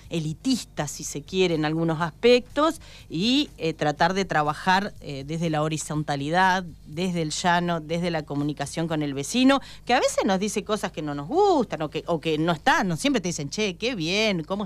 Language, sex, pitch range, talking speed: Spanish, female, 150-210 Hz, 195 wpm